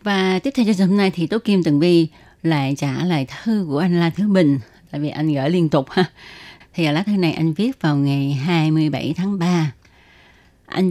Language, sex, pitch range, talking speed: Vietnamese, female, 145-185 Hz, 225 wpm